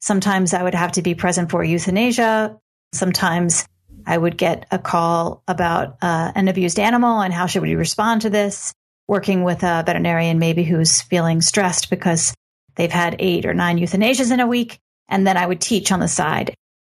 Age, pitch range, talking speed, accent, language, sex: 40-59, 175-205 Hz, 190 wpm, American, English, female